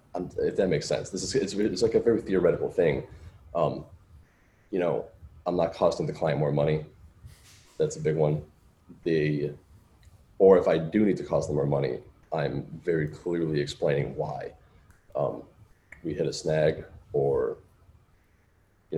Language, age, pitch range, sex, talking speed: English, 30-49, 75-100 Hz, male, 160 wpm